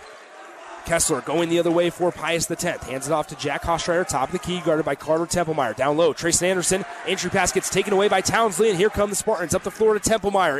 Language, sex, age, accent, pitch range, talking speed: English, male, 30-49, American, 165-200 Hz, 245 wpm